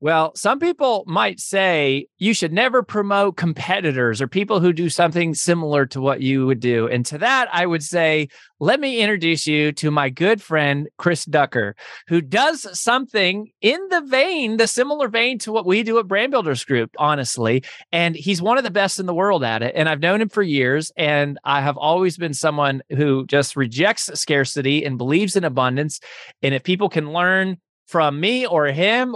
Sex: male